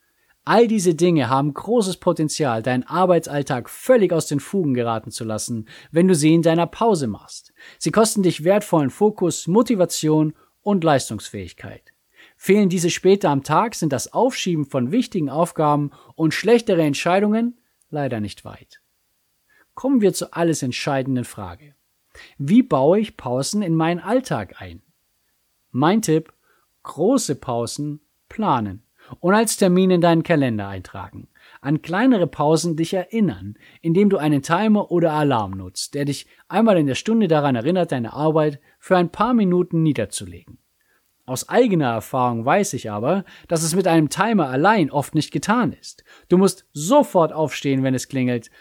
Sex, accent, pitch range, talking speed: male, German, 130-185 Hz, 150 wpm